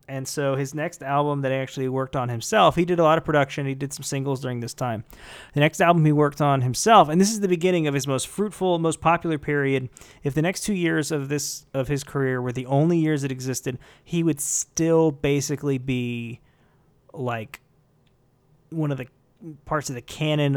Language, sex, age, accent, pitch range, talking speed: English, male, 20-39, American, 130-155 Hz, 205 wpm